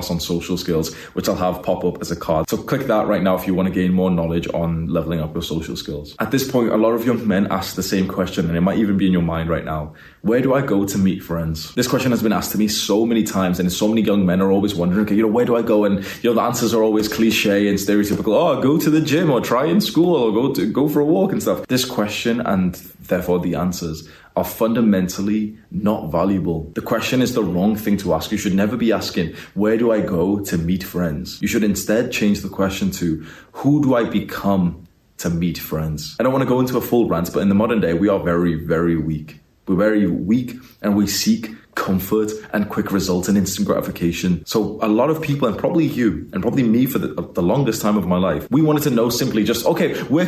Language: English